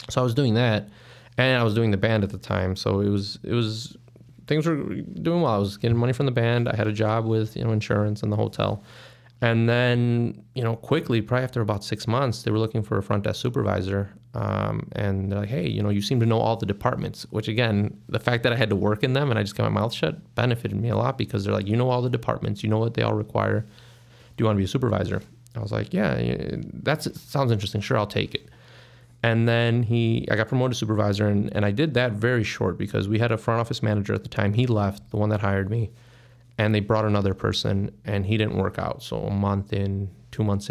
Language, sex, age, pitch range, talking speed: English, male, 20-39, 105-125 Hz, 260 wpm